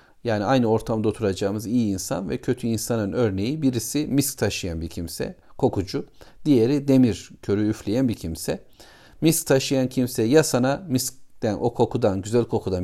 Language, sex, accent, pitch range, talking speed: Turkish, male, native, 105-135 Hz, 150 wpm